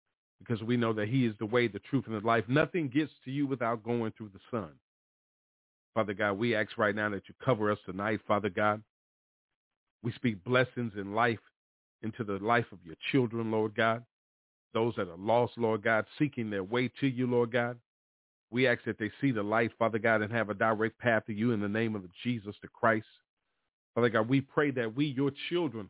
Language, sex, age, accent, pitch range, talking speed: English, male, 40-59, American, 105-125 Hz, 215 wpm